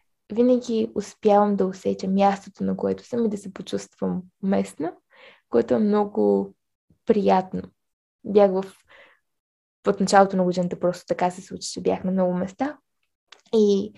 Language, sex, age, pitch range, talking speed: Bulgarian, female, 20-39, 180-215 Hz, 135 wpm